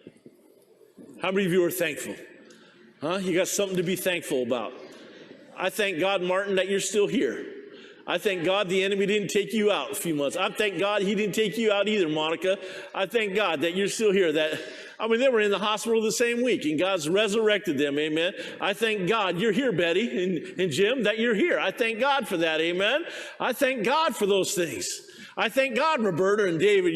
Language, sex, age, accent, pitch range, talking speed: English, male, 50-69, American, 195-260 Hz, 215 wpm